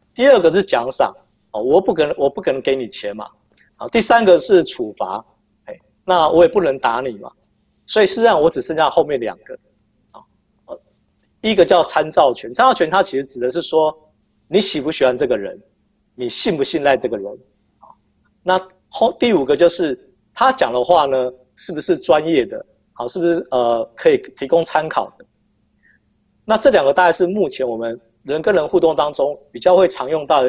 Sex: male